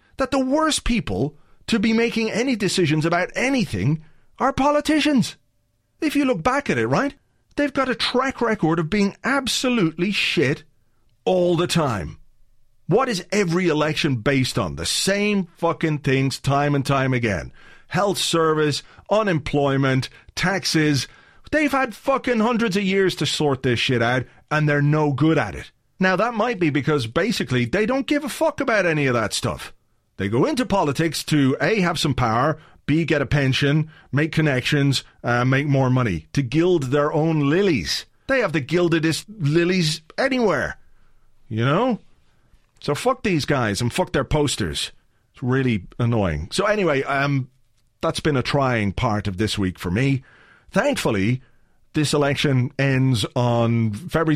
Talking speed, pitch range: 160 wpm, 125-185 Hz